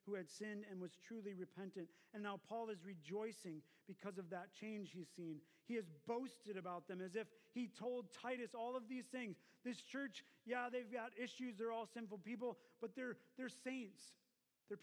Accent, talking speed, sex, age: American, 190 wpm, male, 40-59